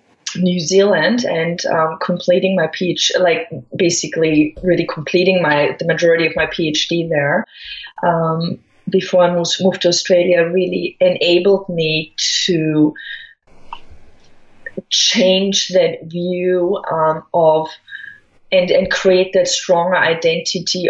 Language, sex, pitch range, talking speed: English, female, 165-190 Hz, 110 wpm